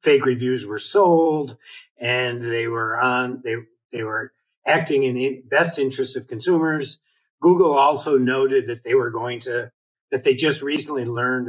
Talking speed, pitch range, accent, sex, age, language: 160 wpm, 125-190 Hz, American, male, 50-69, English